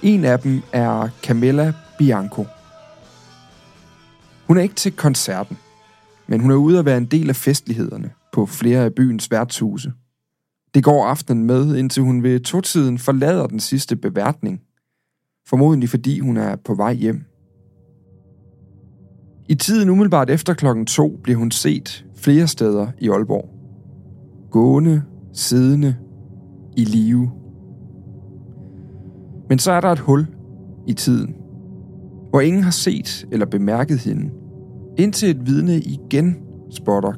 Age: 40-59